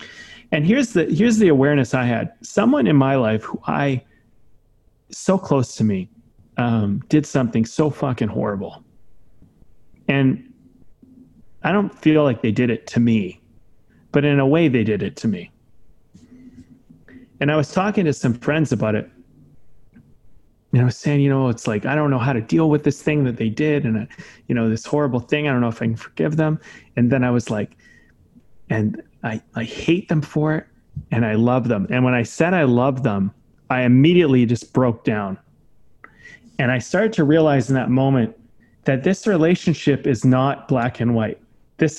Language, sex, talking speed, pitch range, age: English, male, 185 wpm, 115-150 Hz, 30-49